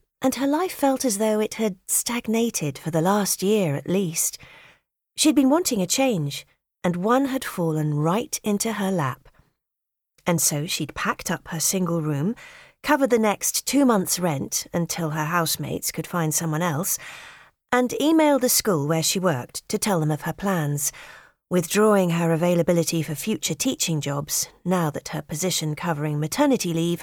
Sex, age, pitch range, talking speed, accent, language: female, 40-59, 165-240 Hz, 170 wpm, British, English